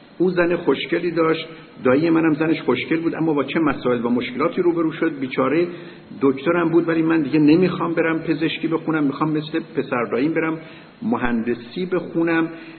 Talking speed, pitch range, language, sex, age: 150 wpm, 155-180 Hz, Persian, male, 50-69